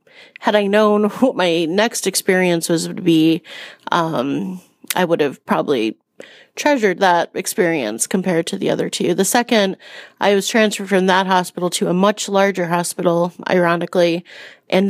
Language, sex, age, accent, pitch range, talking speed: English, female, 30-49, American, 175-205 Hz, 155 wpm